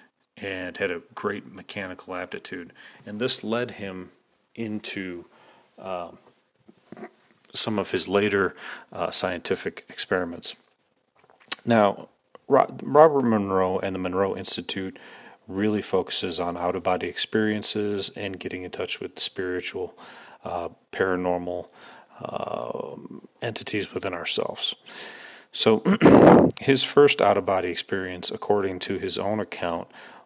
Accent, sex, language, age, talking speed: American, male, English, 40-59, 105 wpm